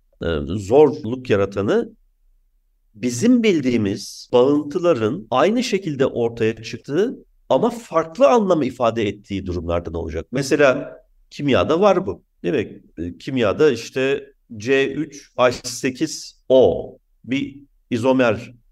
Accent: native